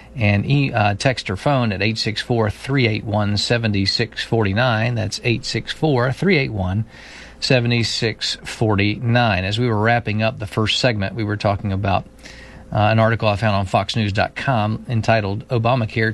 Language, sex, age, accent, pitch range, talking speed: English, male, 50-69, American, 105-120 Hz, 110 wpm